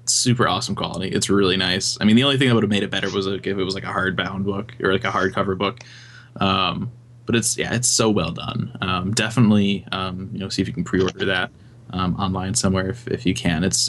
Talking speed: 250 wpm